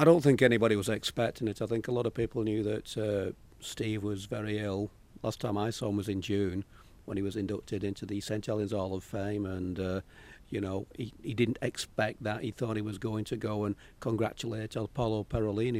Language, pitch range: English, 105-125 Hz